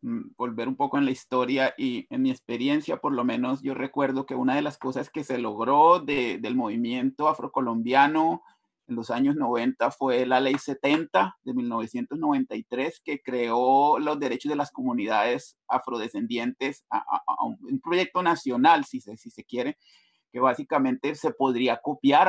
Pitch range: 125-155 Hz